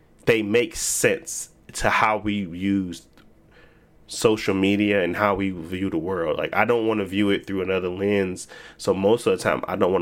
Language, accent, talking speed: English, American, 200 wpm